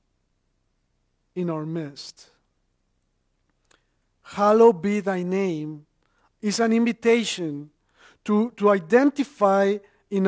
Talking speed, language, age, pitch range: 80 wpm, English, 50-69, 170-215 Hz